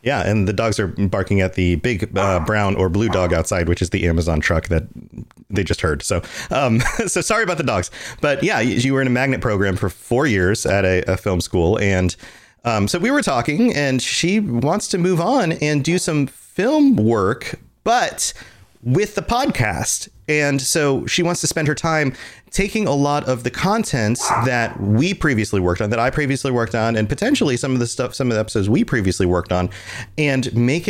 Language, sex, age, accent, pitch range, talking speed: English, male, 30-49, American, 95-135 Hz, 210 wpm